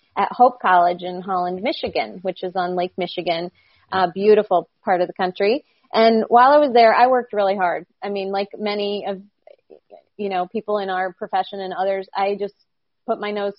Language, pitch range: English, 185-215 Hz